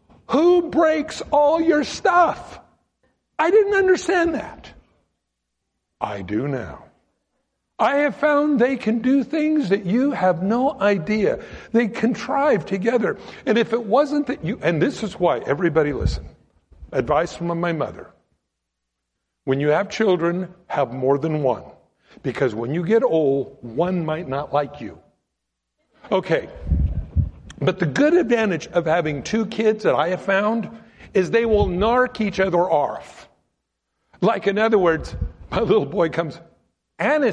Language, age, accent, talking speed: English, 60-79, American, 145 wpm